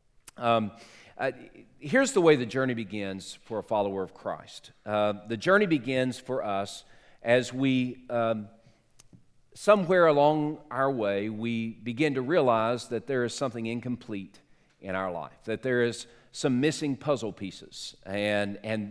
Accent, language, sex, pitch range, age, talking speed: American, English, male, 110-135 Hz, 40-59, 150 wpm